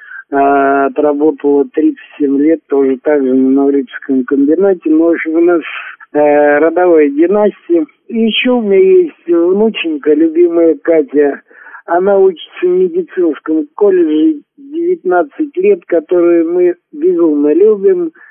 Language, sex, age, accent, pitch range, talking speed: Russian, male, 50-69, native, 140-215 Hz, 110 wpm